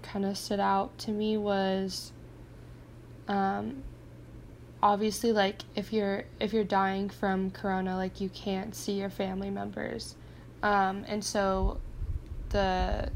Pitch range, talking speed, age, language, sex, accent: 180-200 Hz, 130 wpm, 10-29, English, female, American